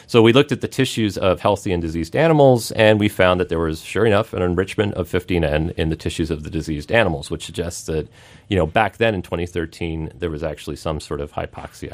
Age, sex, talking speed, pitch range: 40-59, male, 230 wpm, 85-115 Hz